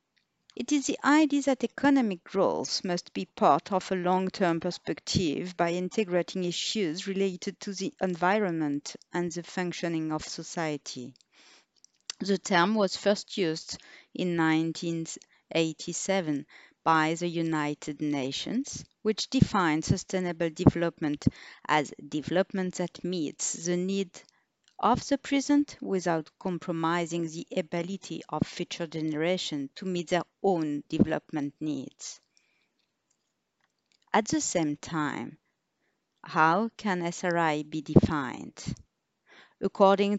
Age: 50-69